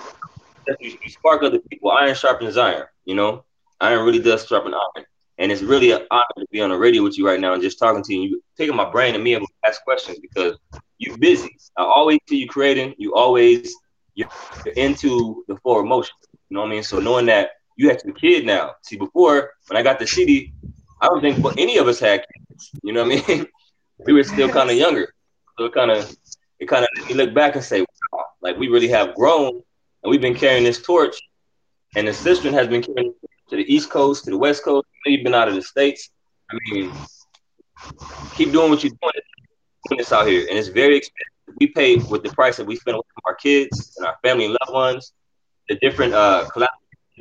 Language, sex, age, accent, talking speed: English, male, 20-39, American, 230 wpm